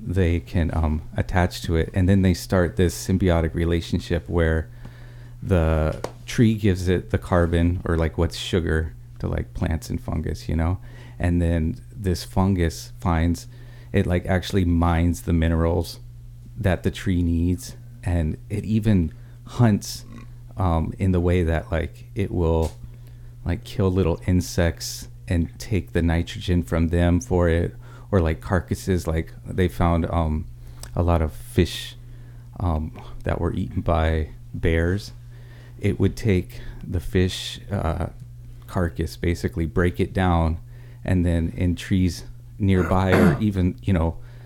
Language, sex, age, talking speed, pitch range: English, male, 30-49, 145 wpm, 85-120 Hz